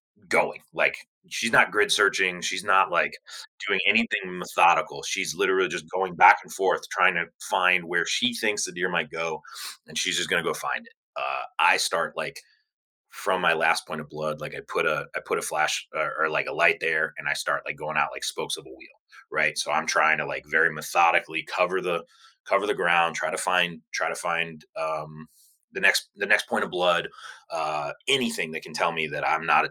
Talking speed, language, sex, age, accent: 220 wpm, English, male, 30-49, American